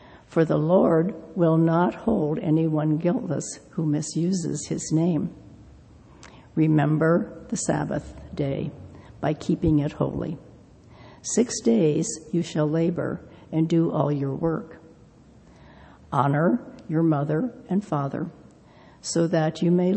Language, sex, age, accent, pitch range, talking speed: English, female, 60-79, American, 150-170 Hz, 115 wpm